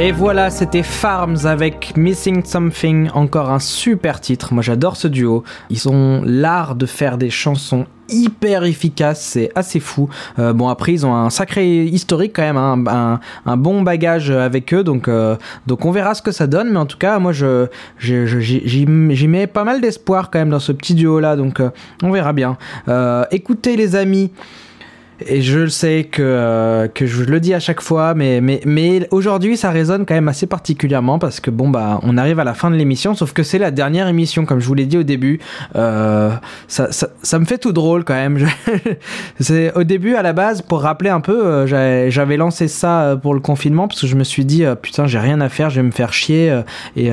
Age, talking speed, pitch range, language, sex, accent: 20-39, 220 wpm, 130-180 Hz, French, male, French